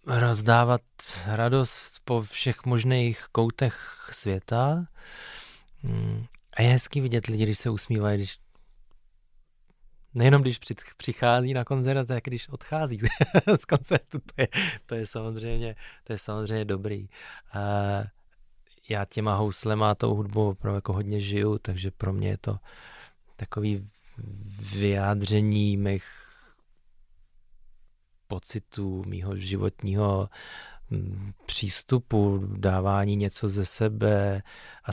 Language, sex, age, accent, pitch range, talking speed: Czech, male, 20-39, native, 100-115 Hz, 105 wpm